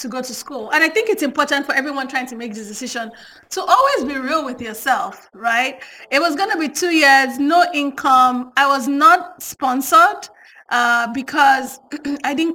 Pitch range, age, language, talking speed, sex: 235-295 Hz, 30-49, English, 185 wpm, female